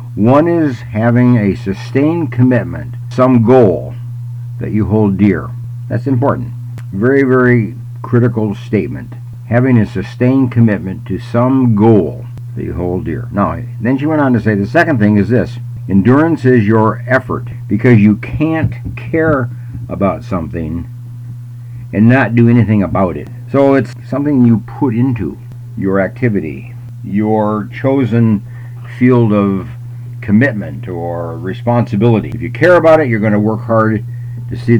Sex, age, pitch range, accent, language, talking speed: male, 60-79, 110-125 Hz, American, English, 145 wpm